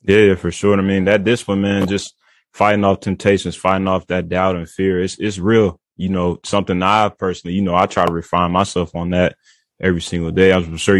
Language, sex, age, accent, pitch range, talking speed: English, male, 20-39, American, 85-95 Hz, 225 wpm